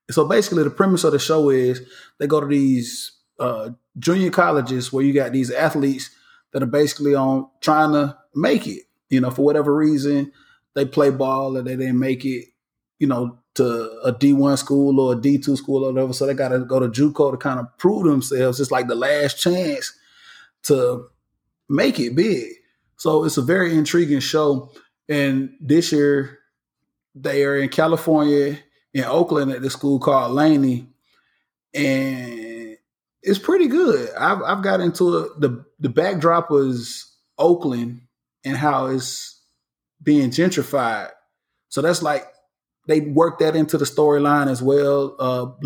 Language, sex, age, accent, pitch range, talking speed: English, male, 20-39, American, 135-155 Hz, 165 wpm